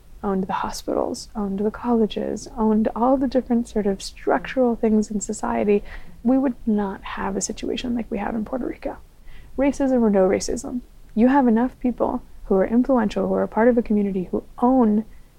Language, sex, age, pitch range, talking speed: English, female, 20-39, 200-240 Hz, 185 wpm